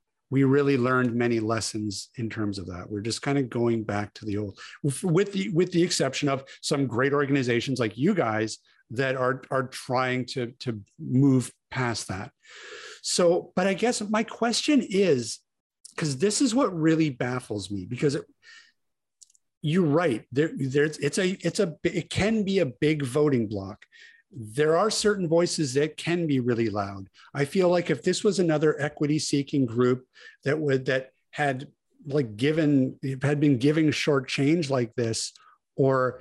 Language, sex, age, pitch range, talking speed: English, male, 50-69, 125-165 Hz, 170 wpm